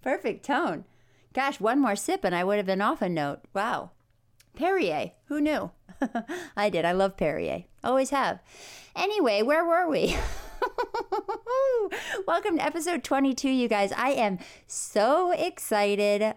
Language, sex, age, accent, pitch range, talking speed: English, female, 30-49, American, 195-280 Hz, 145 wpm